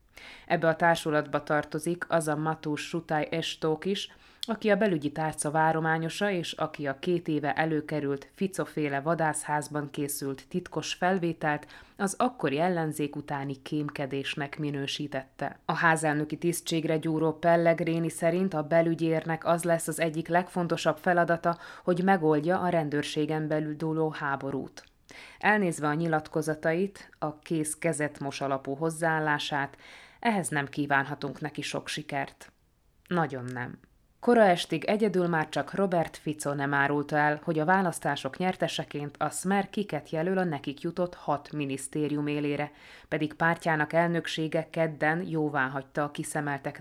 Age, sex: 20-39, female